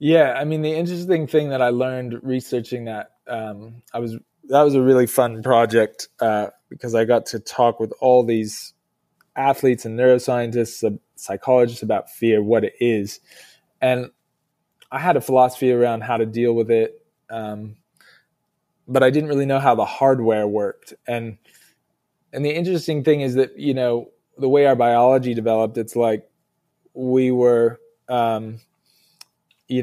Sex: male